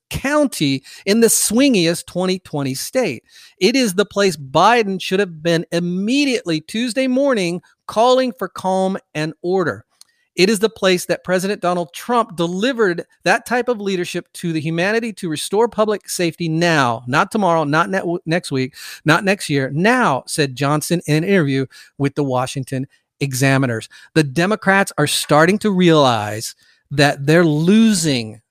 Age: 40-59